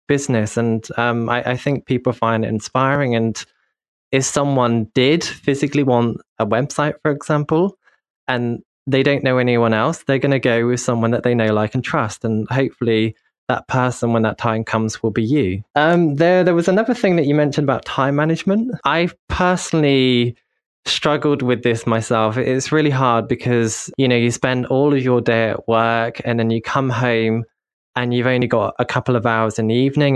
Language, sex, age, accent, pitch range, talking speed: English, male, 20-39, British, 115-135 Hz, 195 wpm